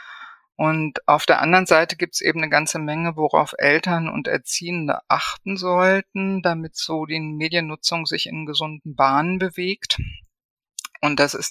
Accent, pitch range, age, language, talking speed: German, 150-175 Hz, 50-69, German, 150 wpm